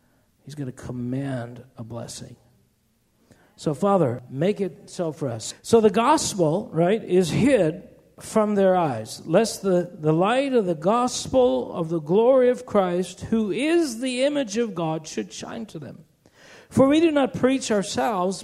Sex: male